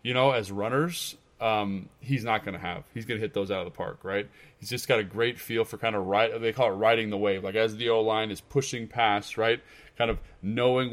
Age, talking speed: 20-39, 260 wpm